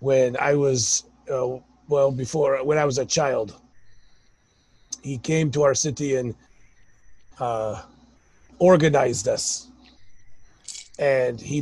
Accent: American